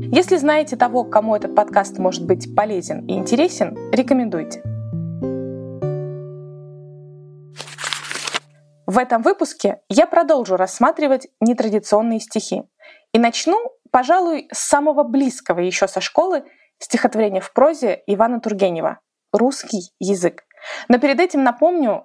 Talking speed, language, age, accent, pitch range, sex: 110 wpm, Russian, 20-39, native, 195-275 Hz, female